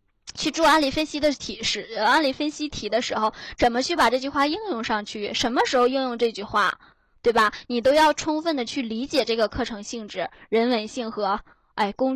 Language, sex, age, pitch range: Chinese, female, 10-29, 215-255 Hz